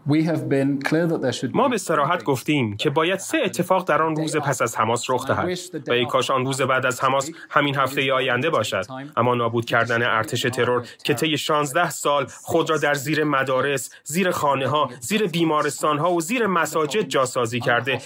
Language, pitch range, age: English, 130-165 Hz, 30-49